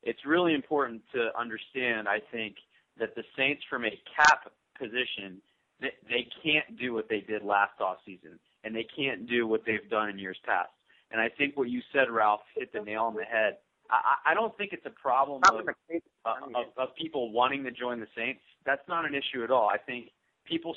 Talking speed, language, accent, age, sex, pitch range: 200 wpm, English, American, 30-49, male, 110-140 Hz